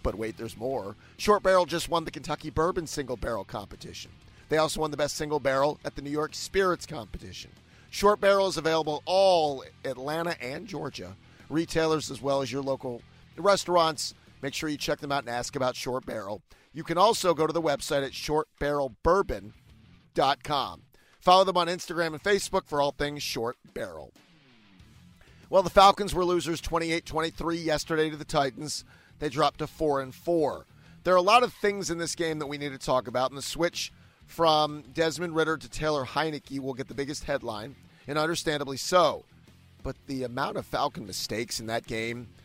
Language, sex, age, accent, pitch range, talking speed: English, male, 40-59, American, 130-165 Hz, 185 wpm